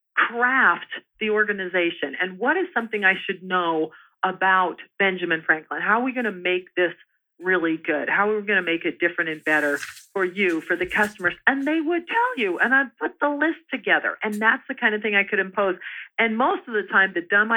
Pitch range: 175-230 Hz